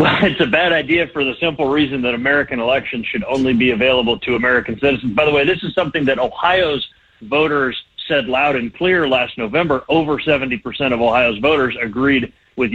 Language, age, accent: English, 40-59, American